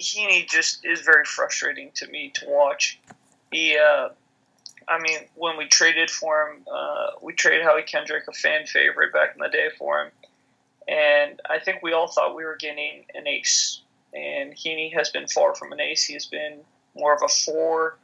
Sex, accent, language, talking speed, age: male, American, English, 190 wpm, 20-39